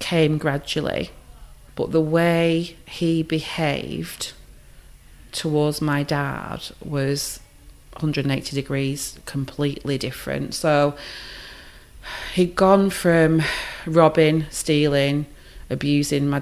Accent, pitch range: British, 140-160 Hz